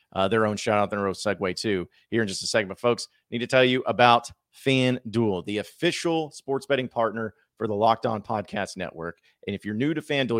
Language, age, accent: English, 40-59, American